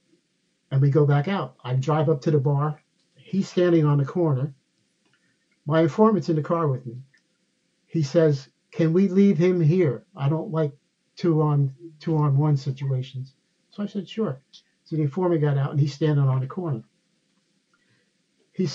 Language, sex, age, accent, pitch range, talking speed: English, male, 50-69, American, 140-175 Hz, 170 wpm